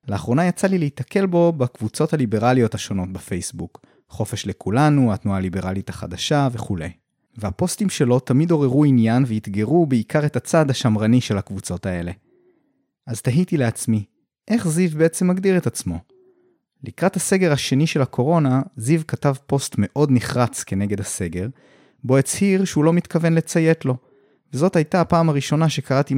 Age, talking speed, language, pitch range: 30-49, 140 wpm, Hebrew, 110-165 Hz